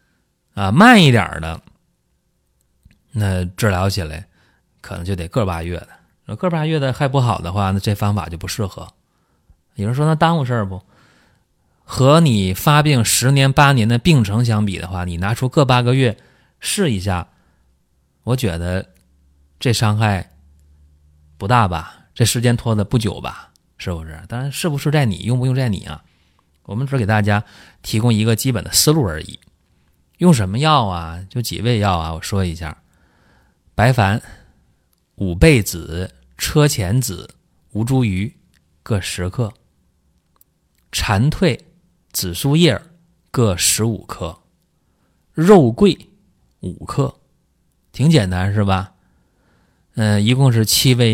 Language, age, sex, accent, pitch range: Chinese, 30-49, male, native, 85-125 Hz